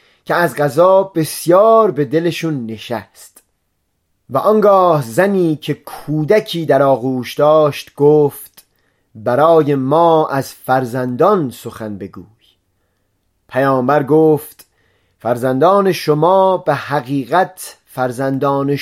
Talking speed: 90 wpm